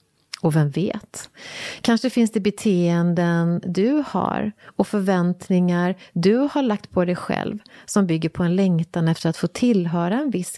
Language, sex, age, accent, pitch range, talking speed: English, female, 30-49, Swedish, 175-225 Hz, 160 wpm